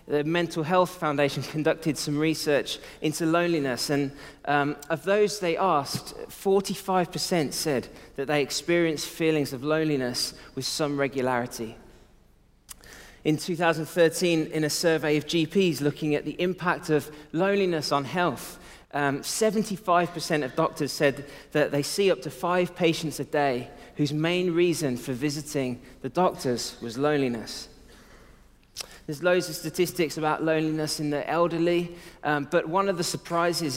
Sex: male